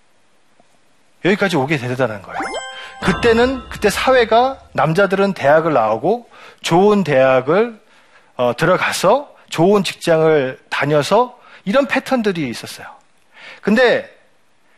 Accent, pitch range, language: native, 140-220 Hz, Korean